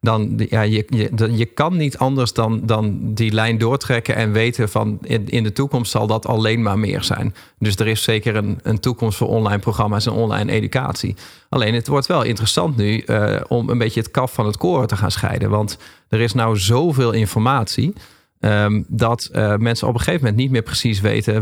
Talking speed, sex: 200 wpm, male